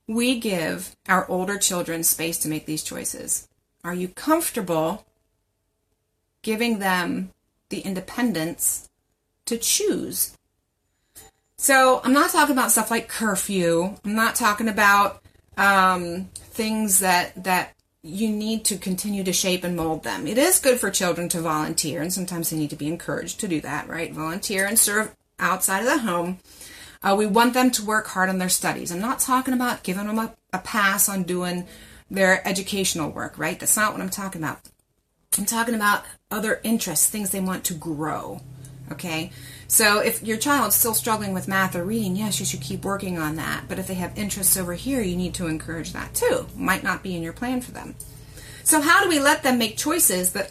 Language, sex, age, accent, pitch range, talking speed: English, female, 30-49, American, 170-225 Hz, 190 wpm